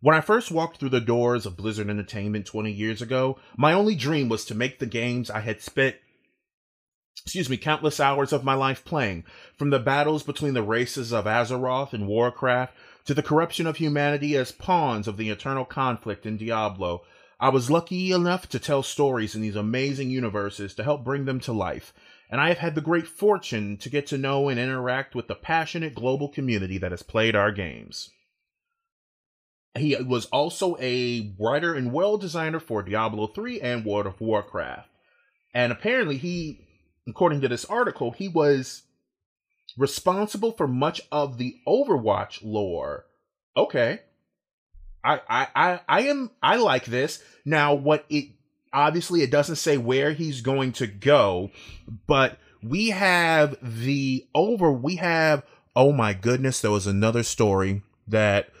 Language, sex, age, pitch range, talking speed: English, male, 30-49, 110-150 Hz, 165 wpm